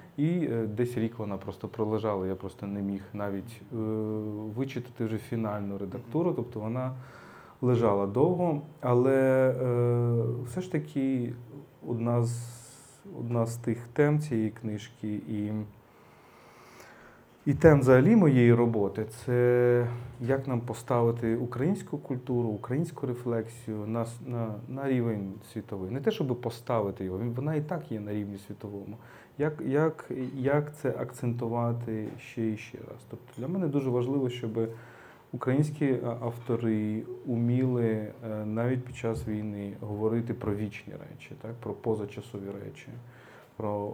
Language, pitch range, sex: Ukrainian, 110-130 Hz, male